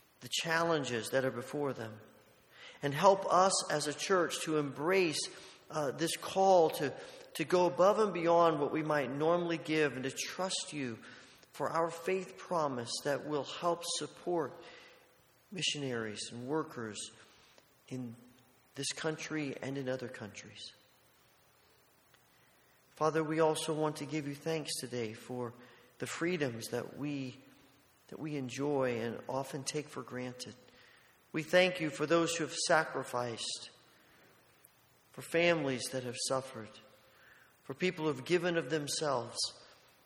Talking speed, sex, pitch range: 140 wpm, male, 130-160 Hz